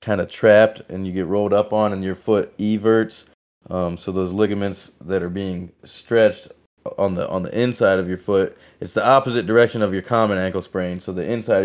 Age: 20-39